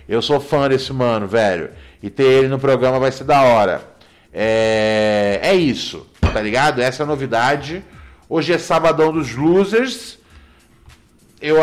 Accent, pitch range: Brazilian, 130-190 Hz